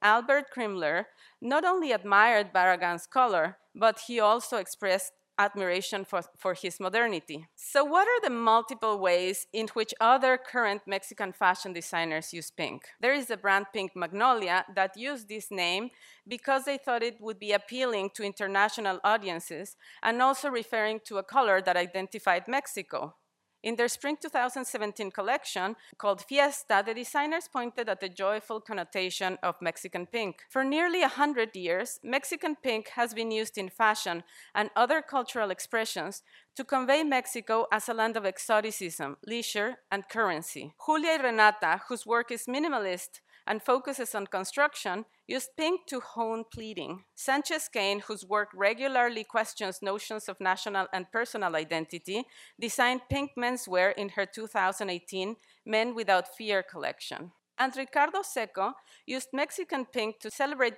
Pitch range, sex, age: 195-255 Hz, female, 40-59